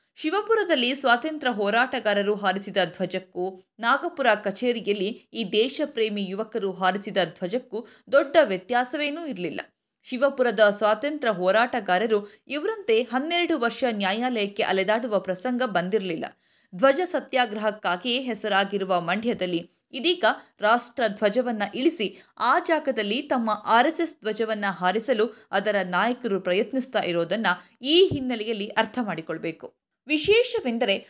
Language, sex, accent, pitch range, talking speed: Kannada, female, native, 205-265 Hz, 85 wpm